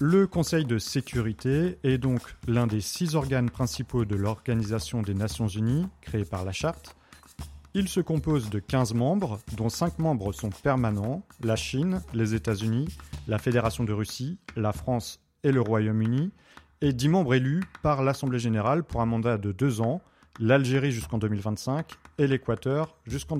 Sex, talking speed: male, 160 wpm